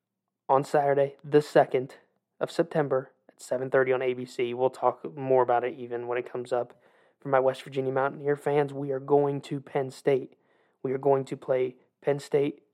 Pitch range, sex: 130-145 Hz, male